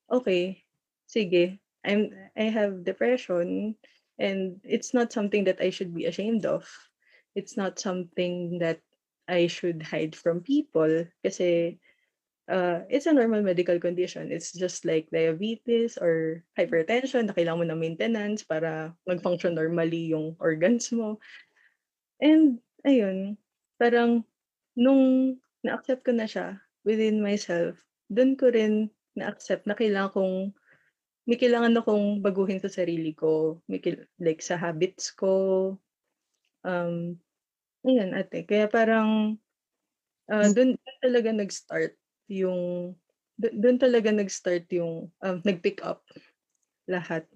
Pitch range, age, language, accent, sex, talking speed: 175-225 Hz, 20-39, Filipino, native, female, 120 wpm